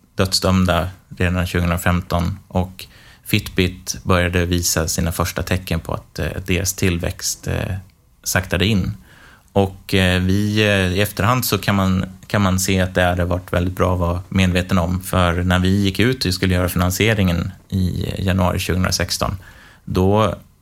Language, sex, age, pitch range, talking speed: Swedish, male, 30-49, 90-100 Hz, 140 wpm